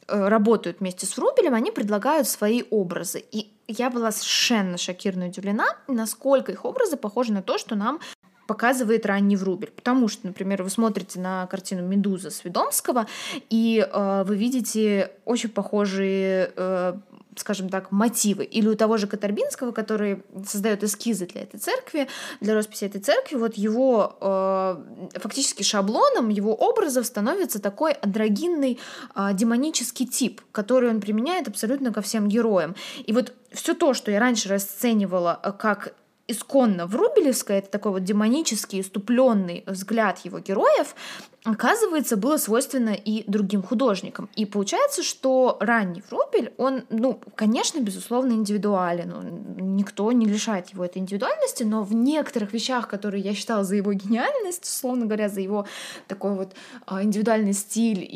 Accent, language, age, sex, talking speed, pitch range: native, Russian, 20-39, female, 140 wpm, 200-250 Hz